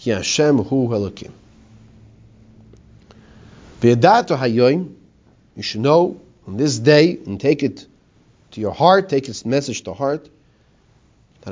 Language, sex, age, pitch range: English, male, 40-59, 110-155 Hz